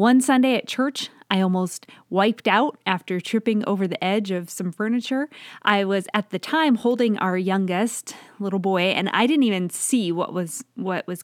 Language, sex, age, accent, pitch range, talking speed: English, female, 20-39, American, 185-240 Hz, 185 wpm